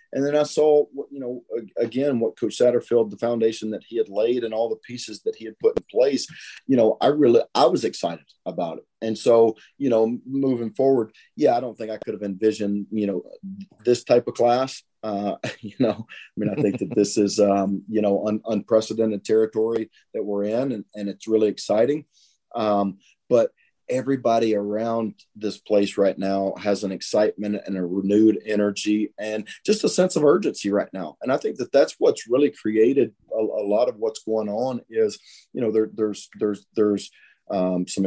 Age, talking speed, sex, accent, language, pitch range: 40-59, 195 wpm, male, American, English, 105-130 Hz